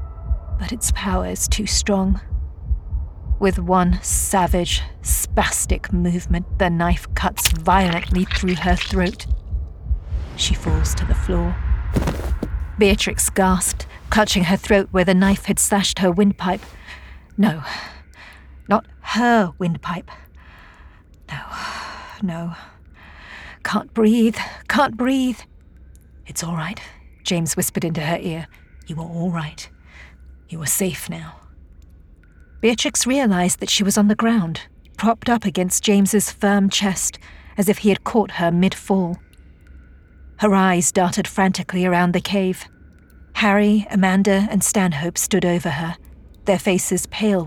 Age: 40-59